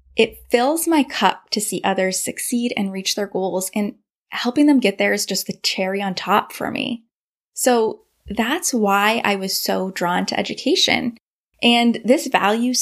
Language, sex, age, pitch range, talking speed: English, female, 10-29, 195-260 Hz, 175 wpm